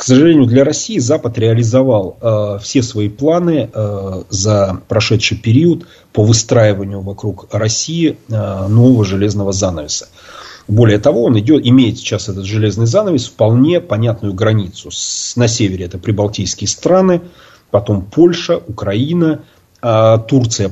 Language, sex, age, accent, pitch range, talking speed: Russian, male, 30-49, native, 100-125 Hz, 120 wpm